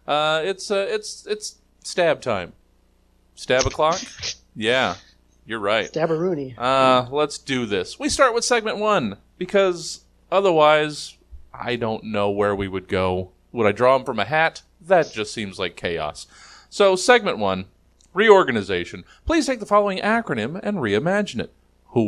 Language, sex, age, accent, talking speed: English, male, 40-59, American, 150 wpm